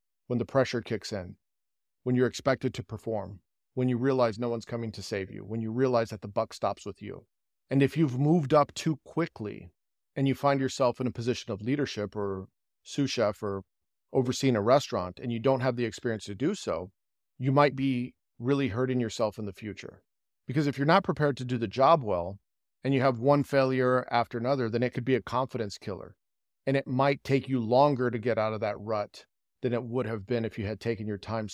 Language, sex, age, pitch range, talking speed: English, male, 40-59, 110-135 Hz, 220 wpm